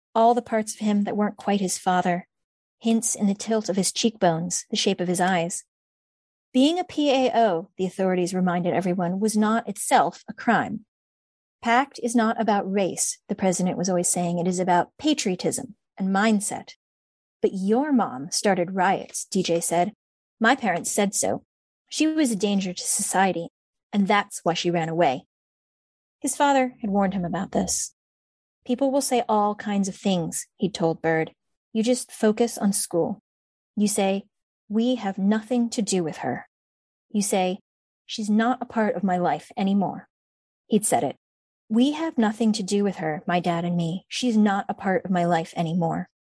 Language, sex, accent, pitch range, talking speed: English, female, American, 180-230 Hz, 175 wpm